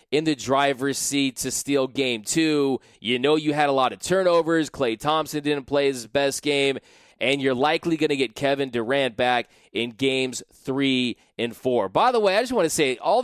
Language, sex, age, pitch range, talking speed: English, male, 20-39, 135-160 Hz, 210 wpm